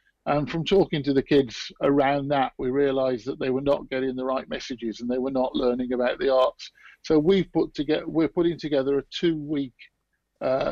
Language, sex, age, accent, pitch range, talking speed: English, male, 50-69, British, 135-155 Hz, 205 wpm